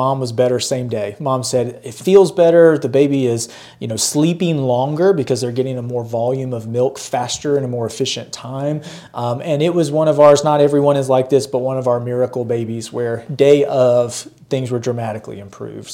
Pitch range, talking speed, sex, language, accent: 125-150 Hz, 210 wpm, male, English, American